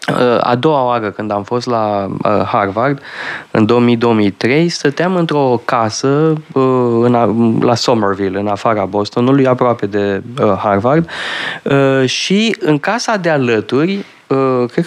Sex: male